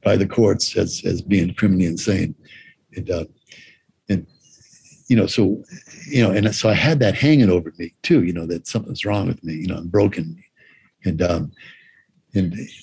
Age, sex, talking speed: 60-79, male, 180 wpm